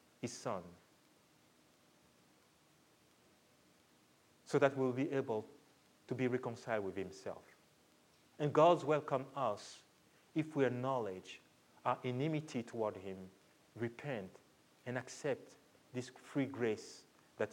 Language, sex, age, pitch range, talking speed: English, male, 40-59, 95-135 Hz, 100 wpm